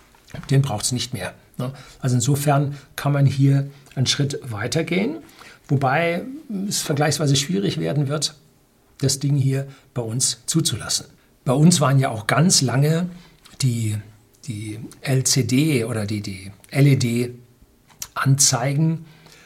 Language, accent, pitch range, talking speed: German, German, 125-150 Hz, 120 wpm